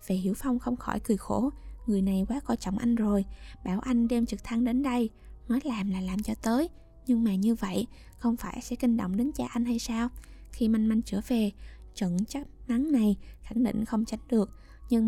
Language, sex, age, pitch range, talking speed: Vietnamese, female, 20-39, 210-250 Hz, 225 wpm